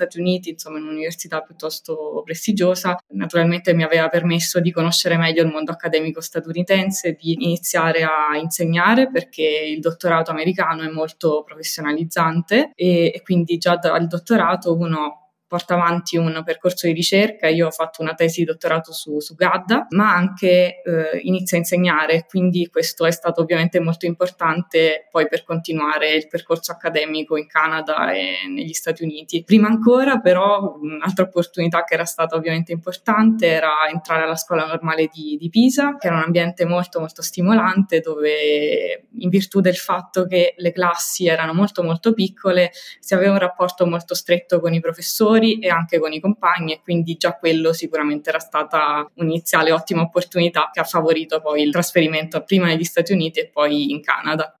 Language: Italian